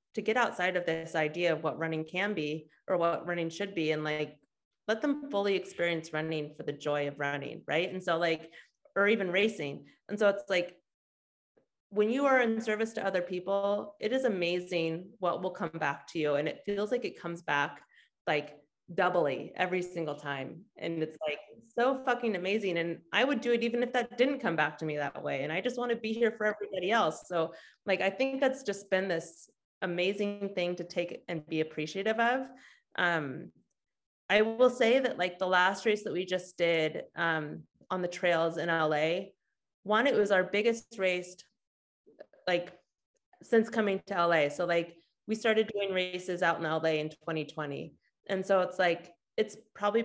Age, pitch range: 30-49, 165-215 Hz